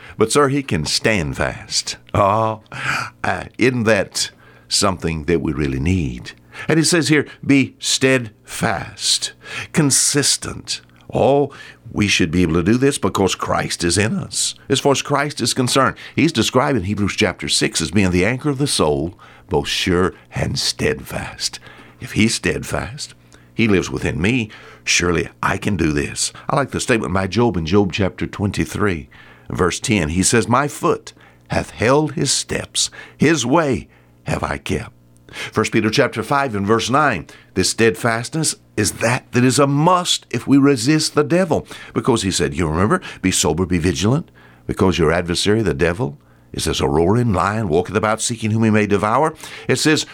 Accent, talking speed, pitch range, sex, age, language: American, 170 wpm, 90-140 Hz, male, 60-79, English